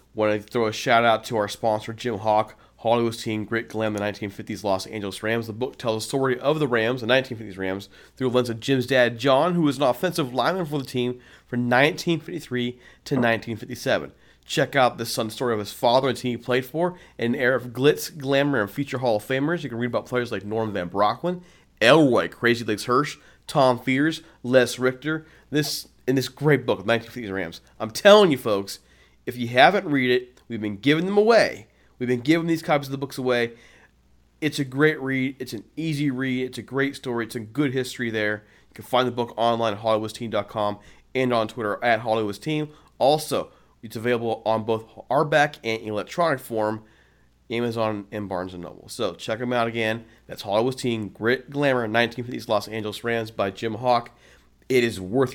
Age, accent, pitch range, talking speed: 30-49, American, 110-135 Hz, 210 wpm